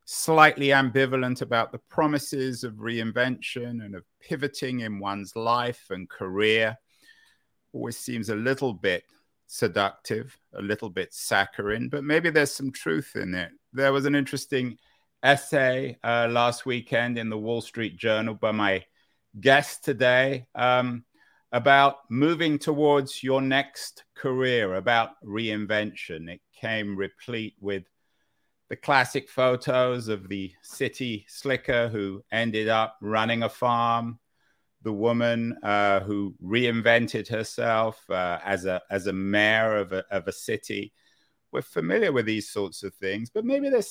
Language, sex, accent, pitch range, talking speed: English, male, British, 105-135 Hz, 140 wpm